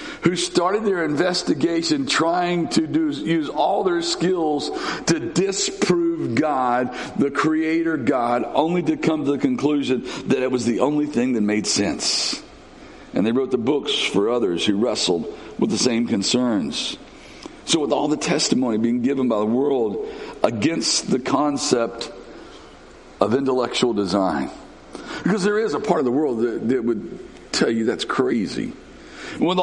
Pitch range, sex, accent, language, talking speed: 120-180 Hz, male, American, English, 155 wpm